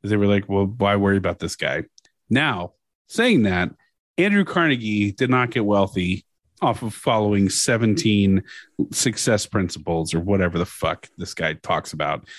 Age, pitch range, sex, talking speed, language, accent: 30-49, 100-135 Hz, male, 155 wpm, English, American